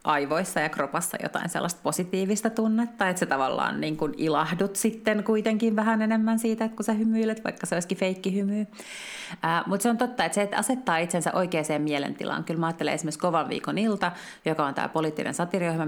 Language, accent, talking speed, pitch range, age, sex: Finnish, native, 185 wpm, 150-200 Hz, 30-49, female